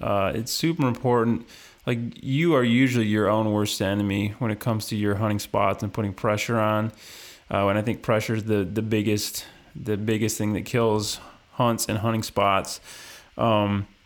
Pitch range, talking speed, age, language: 105-120 Hz, 180 wpm, 20-39, English